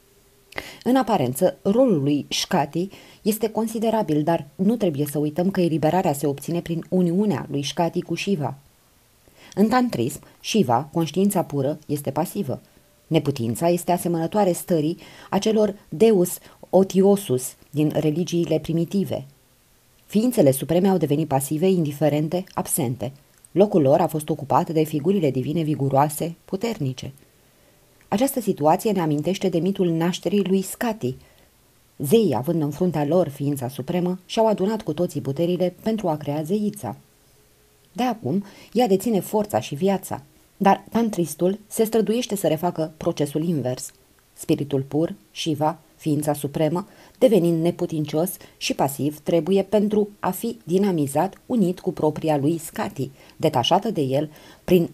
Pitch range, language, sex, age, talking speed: 150-195 Hz, Romanian, female, 20-39, 130 wpm